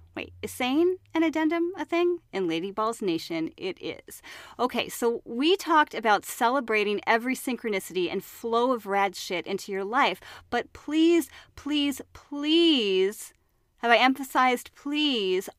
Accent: American